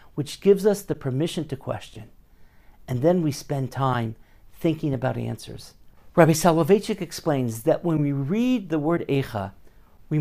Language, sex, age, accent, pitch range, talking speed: English, male, 50-69, American, 135-195 Hz, 155 wpm